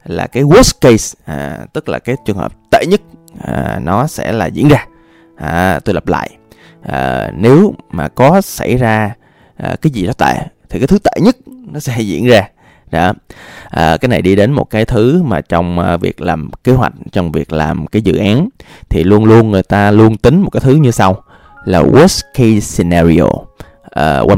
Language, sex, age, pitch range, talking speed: Vietnamese, male, 20-39, 90-125 Hz, 180 wpm